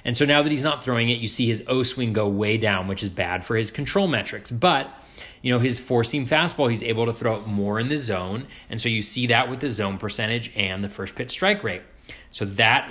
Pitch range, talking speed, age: 110-140 Hz, 260 wpm, 30-49